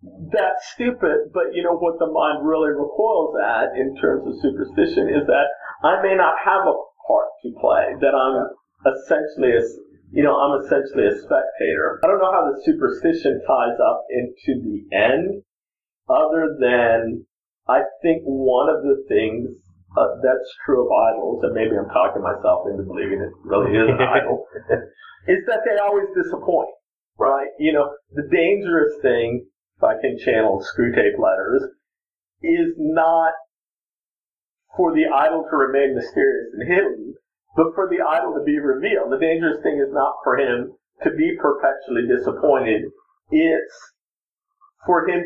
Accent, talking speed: American, 160 wpm